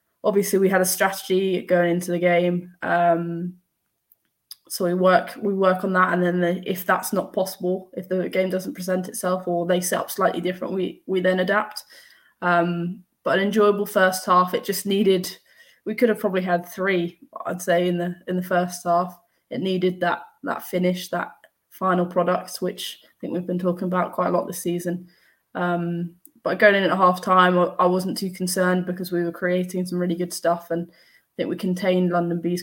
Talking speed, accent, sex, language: 200 wpm, British, female, English